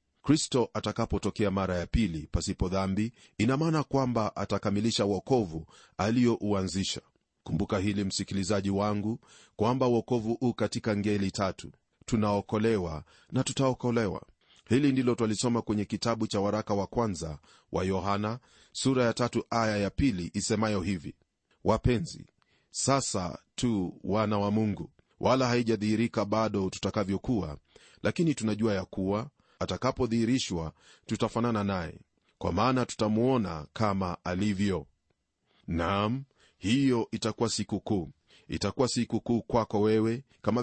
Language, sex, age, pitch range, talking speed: Swahili, male, 40-59, 95-115 Hz, 115 wpm